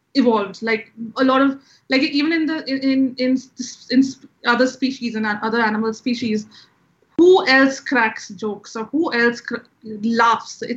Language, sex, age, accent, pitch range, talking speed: English, female, 20-39, Indian, 225-265 Hz, 160 wpm